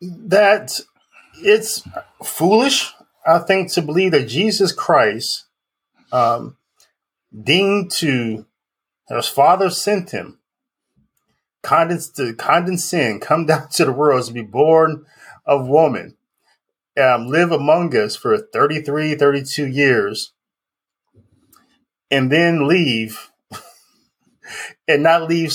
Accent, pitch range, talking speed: American, 135-185 Hz, 100 wpm